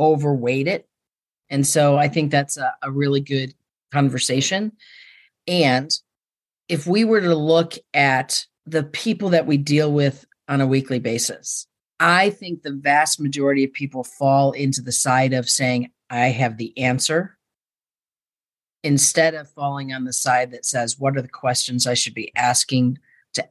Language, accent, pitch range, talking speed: English, American, 130-160 Hz, 160 wpm